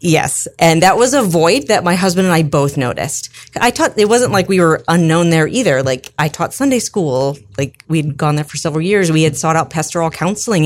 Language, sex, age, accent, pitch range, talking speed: English, female, 30-49, American, 145-190 Hz, 230 wpm